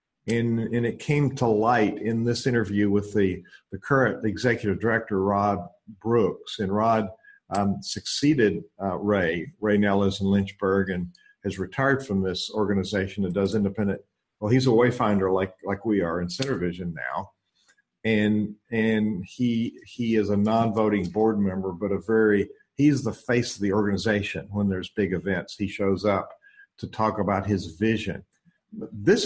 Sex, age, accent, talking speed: male, 50-69, American, 165 wpm